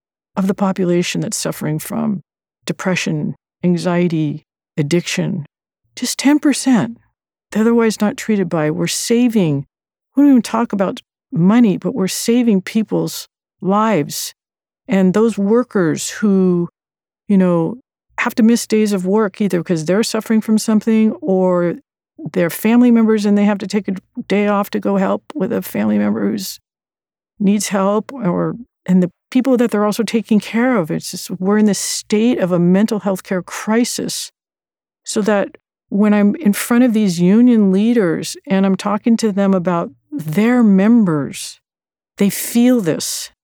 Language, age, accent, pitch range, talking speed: English, 50-69, American, 185-220 Hz, 155 wpm